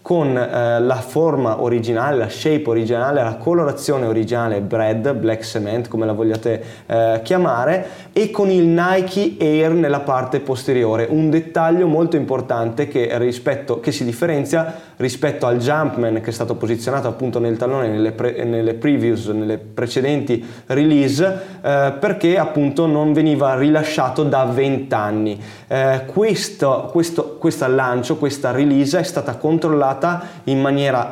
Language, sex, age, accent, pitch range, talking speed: Italian, male, 20-39, native, 120-160 Hz, 135 wpm